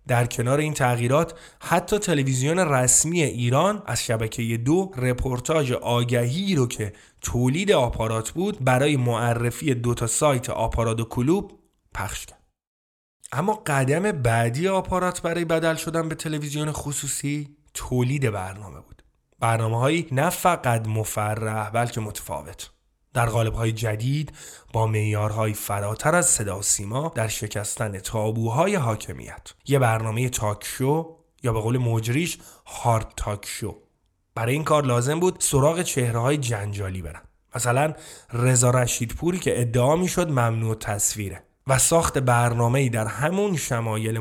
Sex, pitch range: male, 110-145 Hz